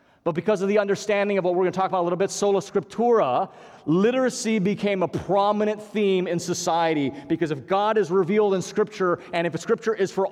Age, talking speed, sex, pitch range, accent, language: 40-59, 215 wpm, male, 130-190 Hz, American, English